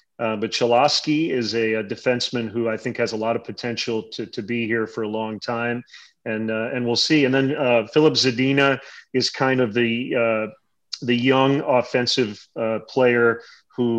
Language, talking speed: English, 190 wpm